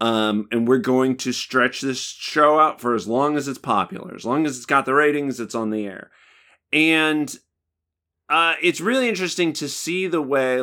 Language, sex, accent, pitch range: English, male, American, 115-160 Hz